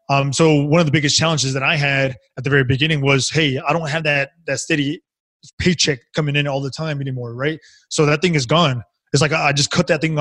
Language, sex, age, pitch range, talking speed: English, male, 20-39, 140-155 Hz, 245 wpm